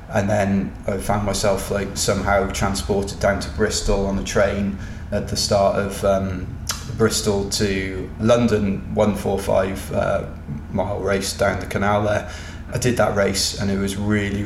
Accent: British